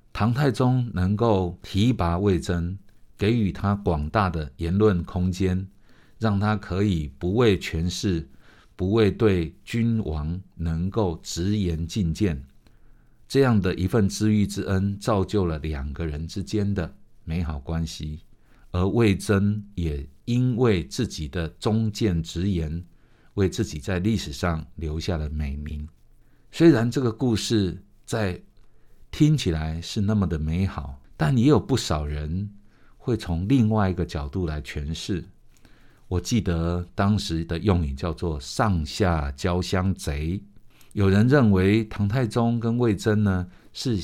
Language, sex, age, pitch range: Chinese, male, 60-79, 85-110 Hz